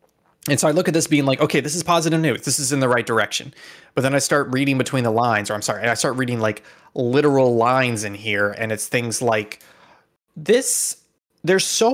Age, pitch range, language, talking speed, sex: 20-39, 120-165 Hz, English, 225 wpm, male